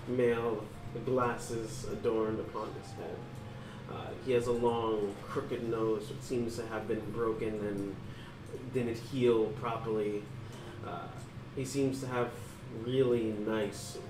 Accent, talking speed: American, 130 wpm